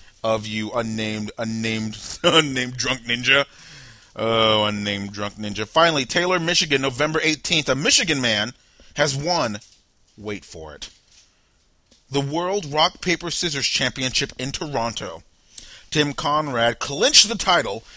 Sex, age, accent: male, 30-49, American